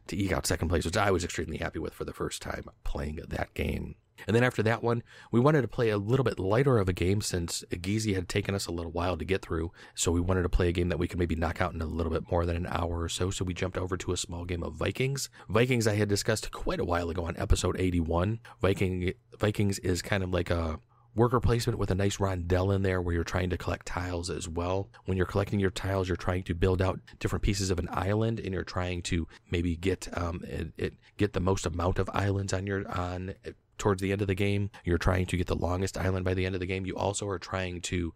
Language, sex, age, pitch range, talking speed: English, male, 30-49, 90-100 Hz, 265 wpm